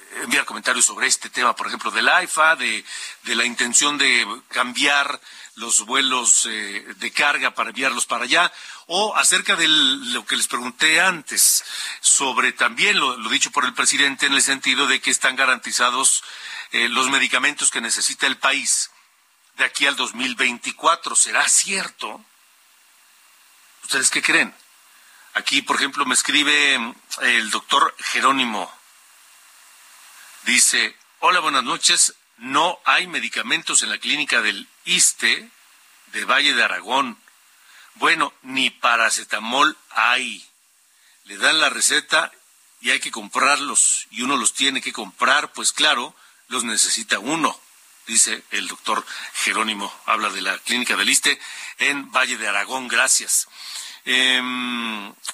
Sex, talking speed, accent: male, 135 wpm, Mexican